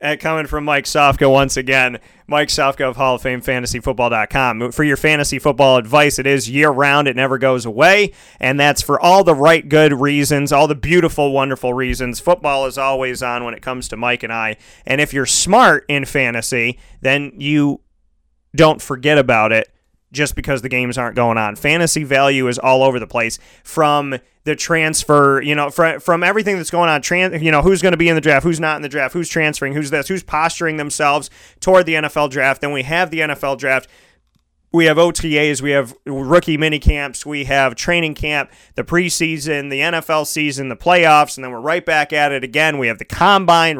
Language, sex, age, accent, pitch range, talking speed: English, male, 30-49, American, 130-160 Hz, 205 wpm